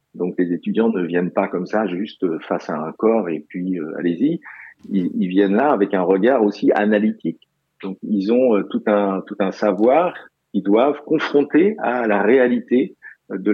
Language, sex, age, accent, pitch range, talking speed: French, male, 50-69, French, 95-115 Hz, 185 wpm